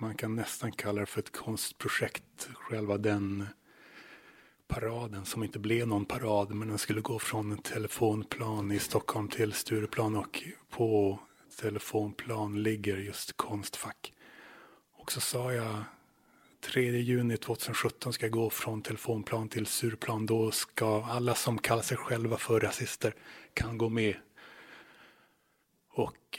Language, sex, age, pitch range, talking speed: Swedish, male, 30-49, 105-115 Hz, 135 wpm